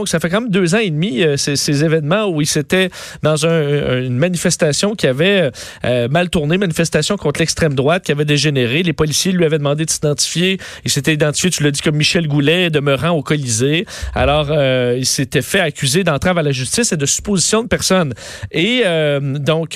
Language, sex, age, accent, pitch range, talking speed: French, male, 40-59, Canadian, 145-190 Hz, 210 wpm